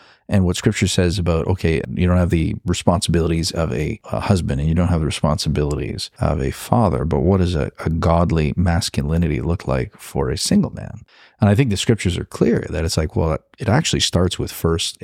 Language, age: English, 40-59